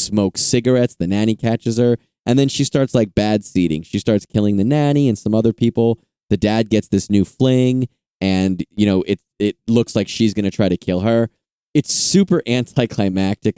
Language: English